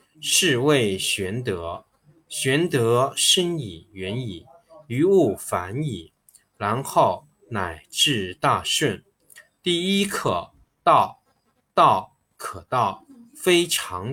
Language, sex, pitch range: Chinese, male, 110-160 Hz